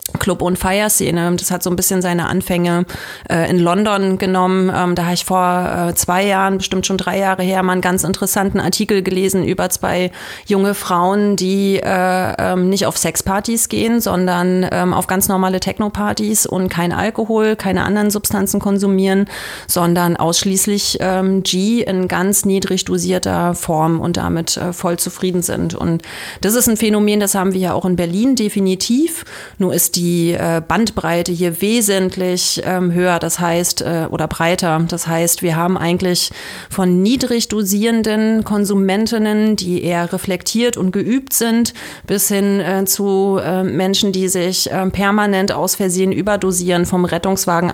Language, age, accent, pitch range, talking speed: German, 30-49, German, 175-200 Hz, 155 wpm